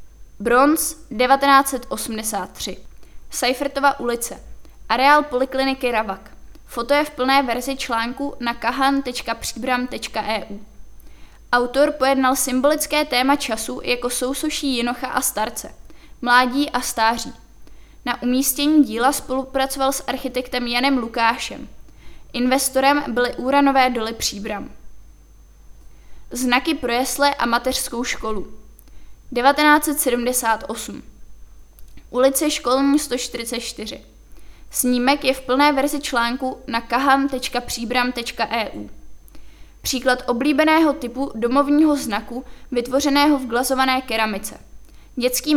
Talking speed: 90 wpm